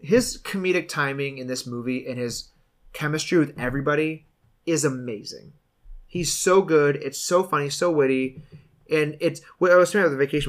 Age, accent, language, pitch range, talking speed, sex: 30-49, American, English, 125-170 Hz, 170 wpm, male